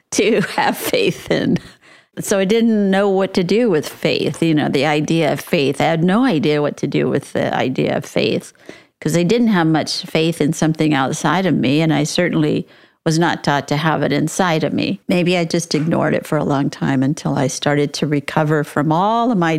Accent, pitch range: American, 155-185 Hz